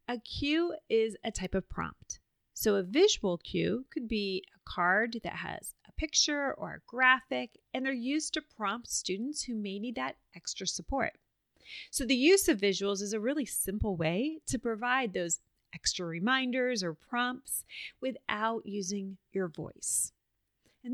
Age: 30-49